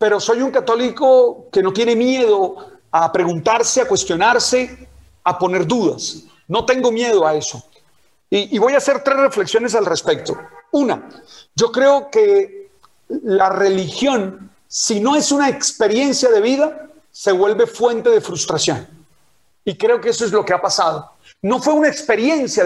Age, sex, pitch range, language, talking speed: 40-59, male, 210-300 Hz, Spanish, 160 wpm